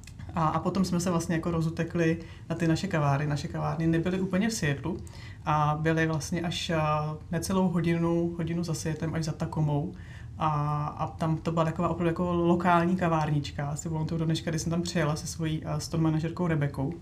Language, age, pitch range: Czech, 30-49, 150-170 Hz